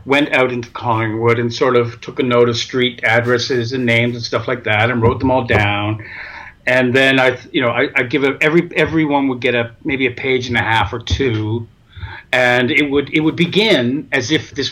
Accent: American